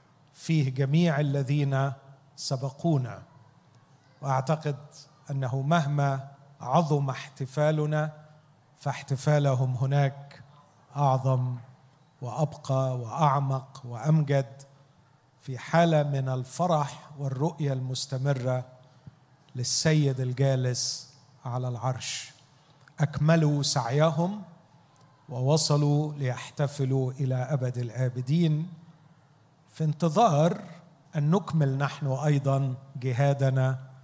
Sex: male